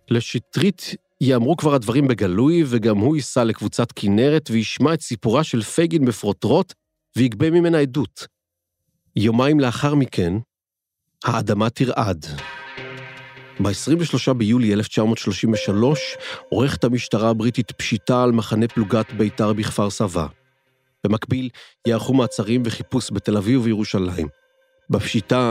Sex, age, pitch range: male, 40-59, 110-130 Hz